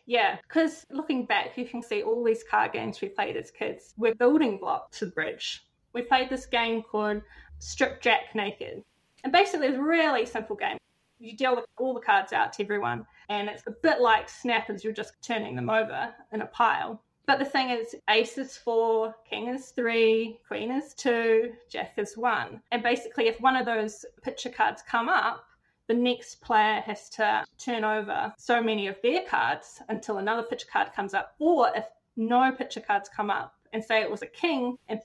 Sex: female